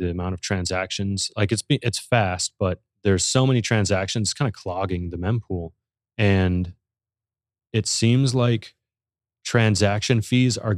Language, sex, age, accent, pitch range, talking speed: English, male, 30-49, American, 95-115 Hz, 145 wpm